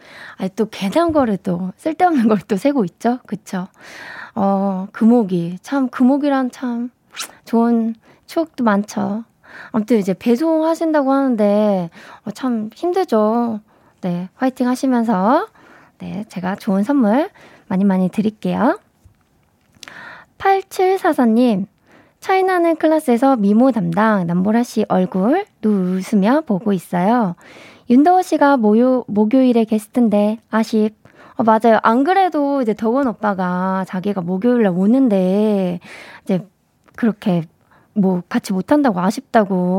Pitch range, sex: 195-260 Hz, female